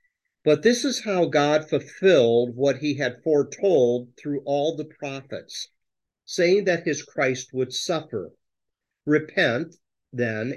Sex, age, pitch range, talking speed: male, 50-69, 130-185 Hz, 125 wpm